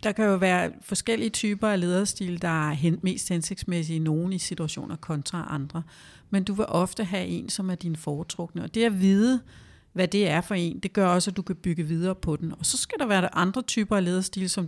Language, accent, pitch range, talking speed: Danish, native, 165-200 Hz, 235 wpm